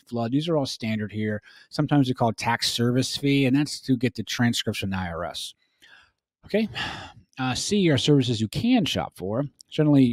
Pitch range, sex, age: 105-130 Hz, male, 30-49